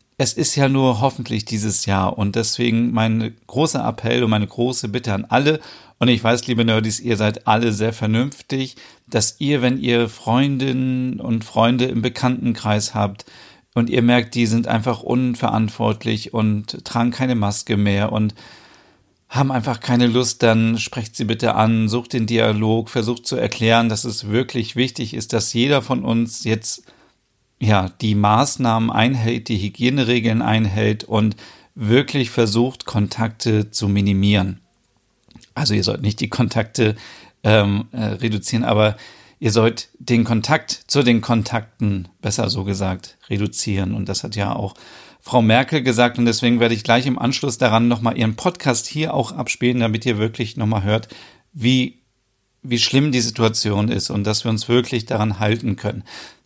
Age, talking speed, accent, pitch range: 40-59, 160 wpm, German, 110-125 Hz